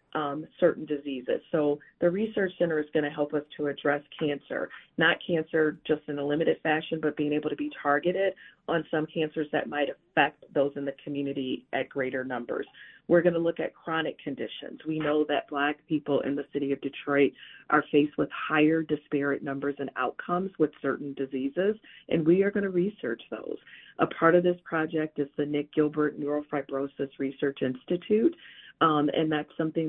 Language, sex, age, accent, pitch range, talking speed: English, female, 40-59, American, 140-160 Hz, 185 wpm